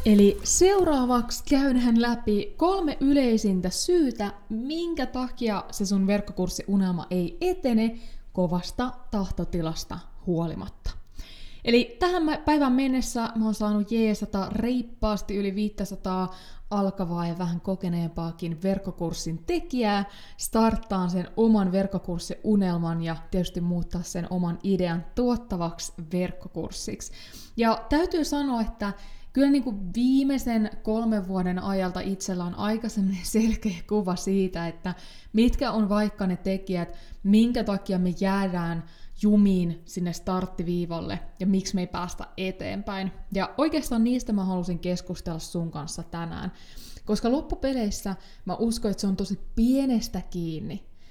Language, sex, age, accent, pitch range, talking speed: Finnish, female, 20-39, native, 180-230 Hz, 115 wpm